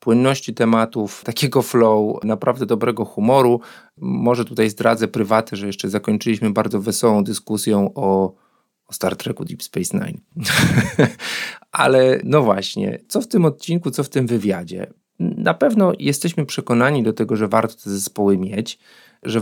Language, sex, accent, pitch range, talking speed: Polish, male, native, 110-135 Hz, 145 wpm